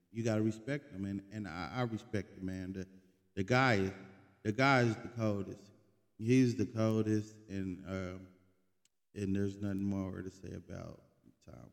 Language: English